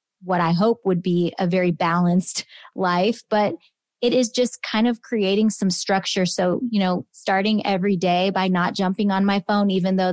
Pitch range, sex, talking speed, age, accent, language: 185-215 Hz, female, 190 wpm, 30-49, American, English